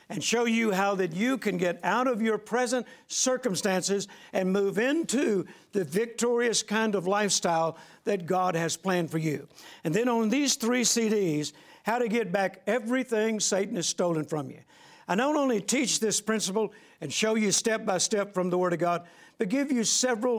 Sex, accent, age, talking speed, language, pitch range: male, American, 60-79, 190 wpm, English, 185-230 Hz